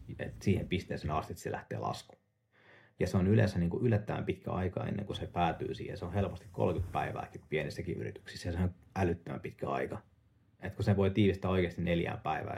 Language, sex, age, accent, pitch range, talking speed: Finnish, male, 30-49, native, 85-105 Hz, 195 wpm